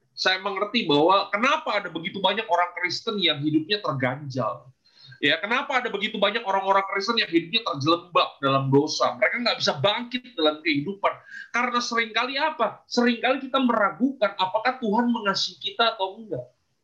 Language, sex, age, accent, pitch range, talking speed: Indonesian, male, 30-49, native, 170-245 Hz, 150 wpm